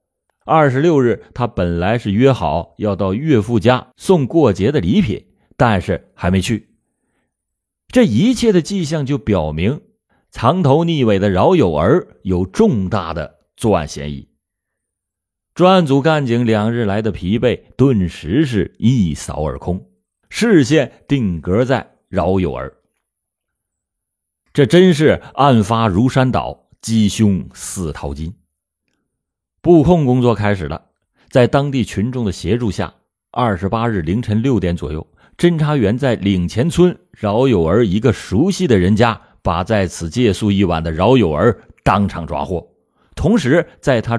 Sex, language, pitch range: male, Chinese, 90-140 Hz